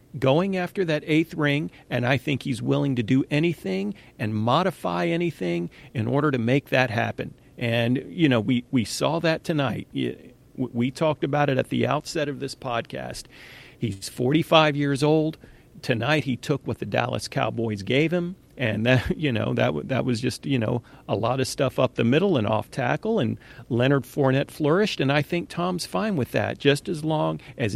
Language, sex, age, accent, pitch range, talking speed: English, male, 40-59, American, 125-150 Hz, 190 wpm